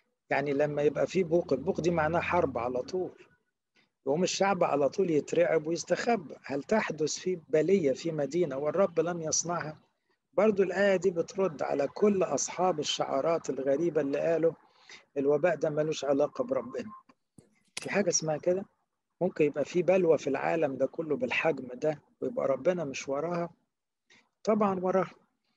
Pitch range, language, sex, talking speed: 150-190 Hz, English, male, 145 wpm